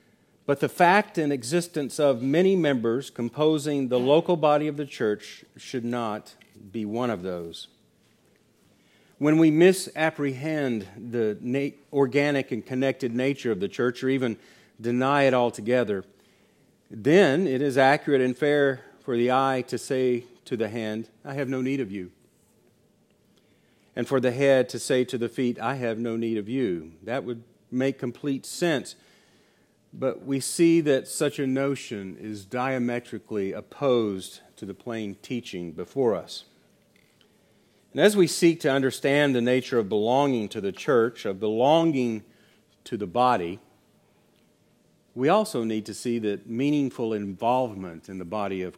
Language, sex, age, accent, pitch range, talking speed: English, male, 40-59, American, 110-140 Hz, 150 wpm